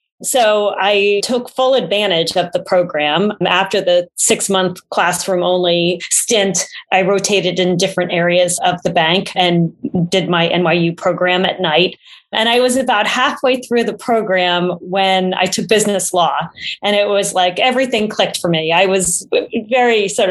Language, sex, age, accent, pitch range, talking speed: English, female, 30-49, American, 170-205 Hz, 155 wpm